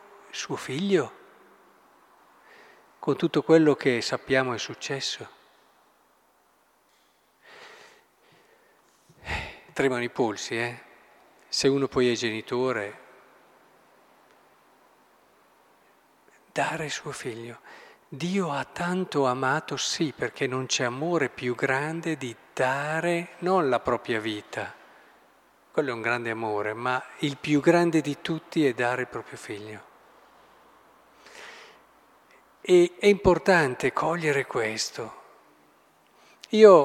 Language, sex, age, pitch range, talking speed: Italian, male, 40-59, 130-185 Hz, 100 wpm